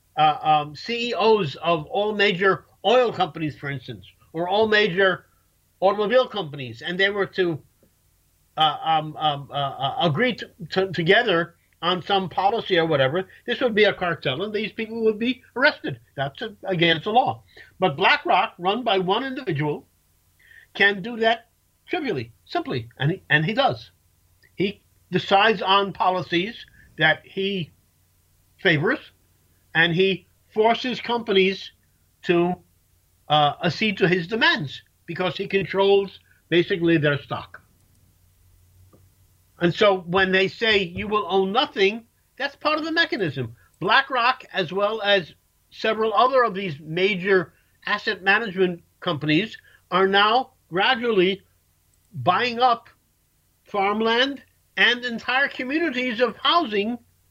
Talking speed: 130 wpm